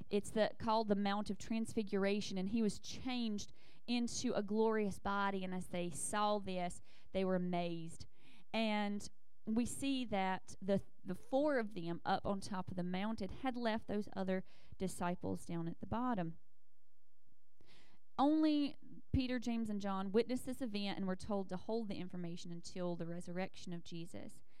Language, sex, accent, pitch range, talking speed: English, female, American, 180-225 Hz, 165 wpm